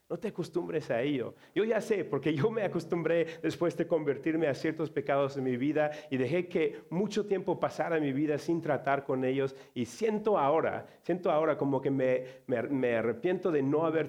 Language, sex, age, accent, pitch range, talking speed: Spanish, male, 40-59, Mexican, 135-185 Hz, 200 wpm